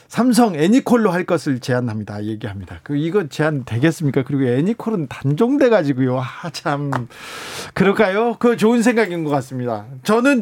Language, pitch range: Korean, 140-190 Hz